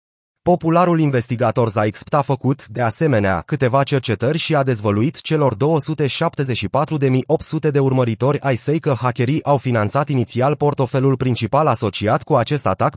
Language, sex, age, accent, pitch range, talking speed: Romanian, male, 30-49, native, 120-150 Hz, 135 wpm